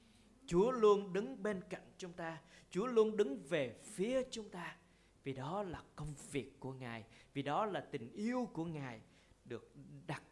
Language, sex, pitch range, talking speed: Vietnamese, male, 145-195 Hz, 175 wpm